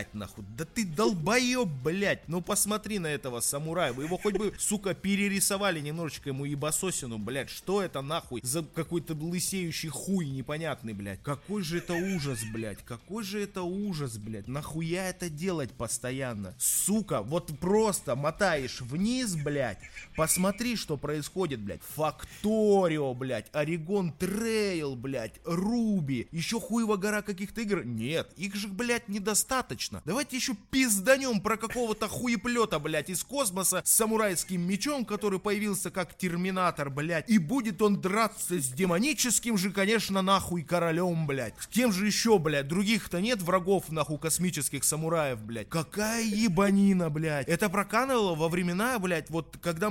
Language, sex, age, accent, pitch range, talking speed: Russian, male, 20-39, native, 155-210 Hz, 145 wpm